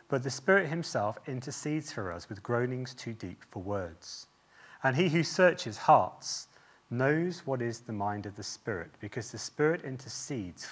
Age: 30-49